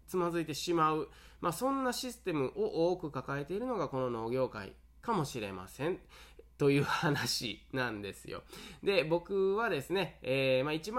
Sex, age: male, 20-39